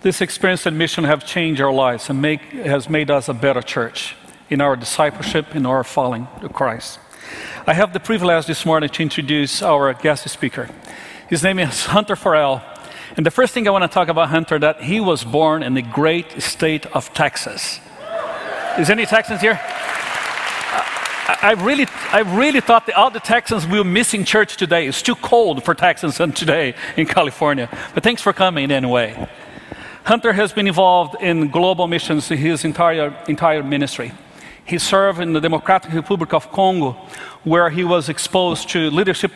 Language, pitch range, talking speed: English, 150-185 Hz, 180 wpm